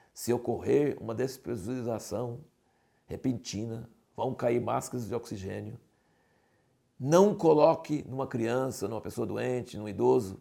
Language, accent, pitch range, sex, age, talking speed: Portuguese, Brazilian, 110-150 Hz, male, 60-79, 110 wpm